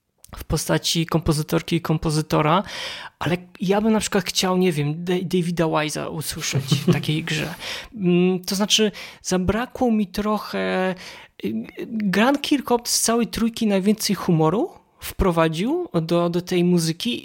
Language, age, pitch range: Polish, 20-39, 160-200 Hz